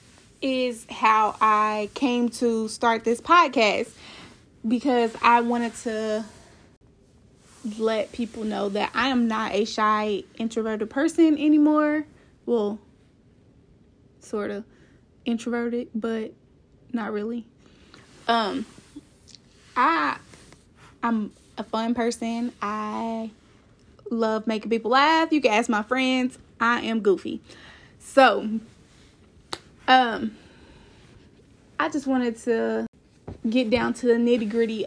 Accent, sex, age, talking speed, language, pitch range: American, female, 20-39, 105 wpm, English, 215-255 Hz